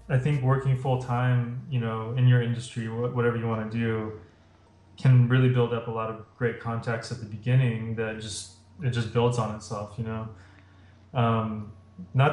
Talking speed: 185 wpm